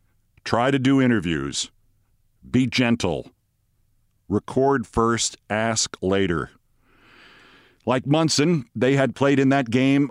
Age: 50-69